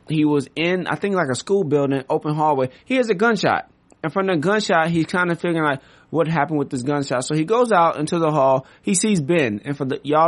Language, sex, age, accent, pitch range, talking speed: English, male, 30-49, American, 140-170 Hz, 250 wpm